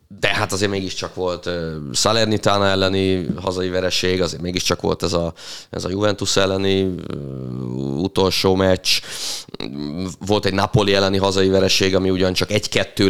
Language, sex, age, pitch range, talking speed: Hungarian, male, 30-49, 90-100 Hz, 130 wpm